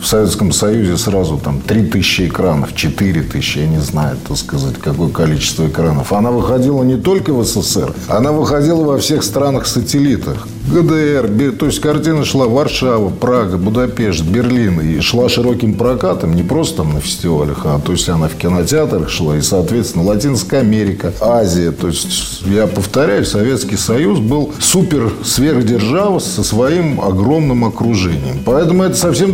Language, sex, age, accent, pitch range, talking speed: Russian, male, 50-69, native, 95-145 Hz, 150 wpm